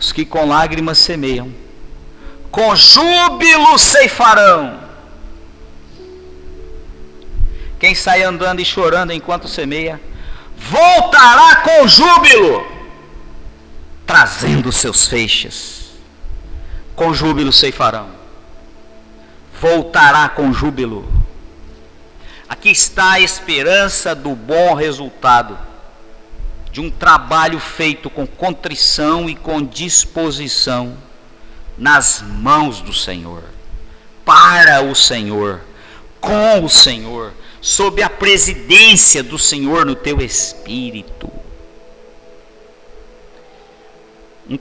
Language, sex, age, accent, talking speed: Portuguese, male, 50-69, Brazilian, 85 wpm